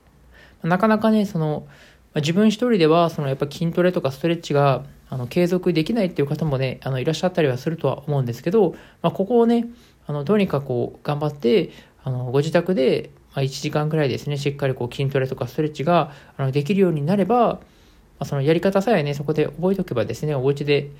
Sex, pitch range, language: male, 140-180 Hz, Japanese